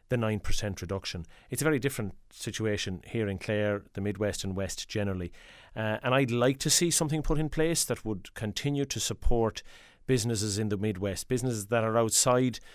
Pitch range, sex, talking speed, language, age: 105-130 Hz, male, 185 wpm, English, 30-49